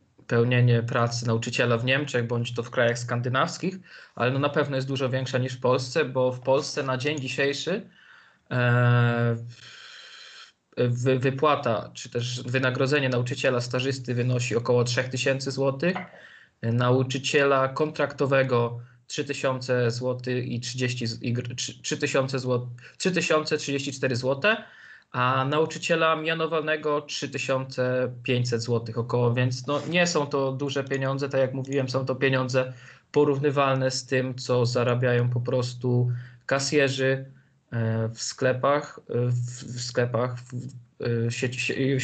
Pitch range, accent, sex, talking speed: 125-140 Hz, native, male, 115 wpm